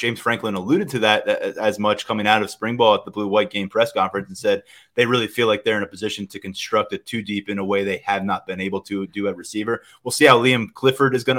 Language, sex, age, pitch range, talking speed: English, male, 20-39, 105-125 Hz, 280 wpm